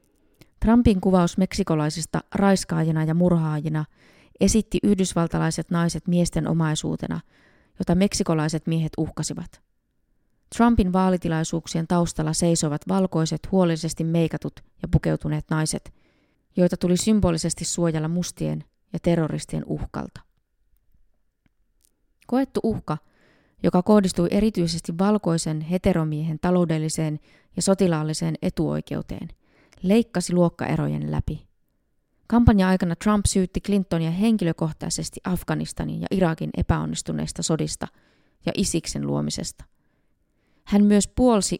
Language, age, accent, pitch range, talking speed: Finnish, 20-39, native, 155-190 Hz, 90 wpm